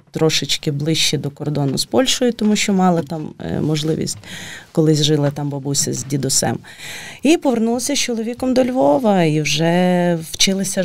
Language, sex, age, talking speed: Ukrainian, female, 30-49, 150 wpm